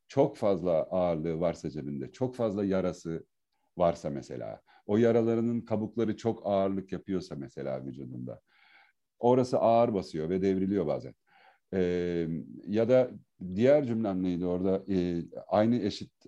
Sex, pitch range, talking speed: male, 90-115 Hz, 125 wpm